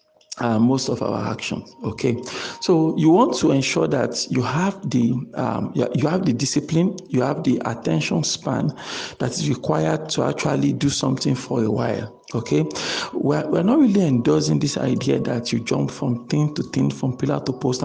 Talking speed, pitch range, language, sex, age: 180 wpm, 125-155 Hz, English, male, 50-69